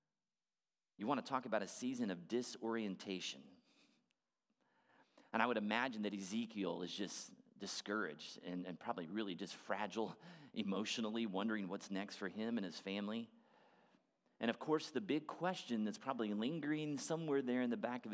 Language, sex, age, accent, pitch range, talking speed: English, male, 30-49, American, 95-125 Hz, 160 wpm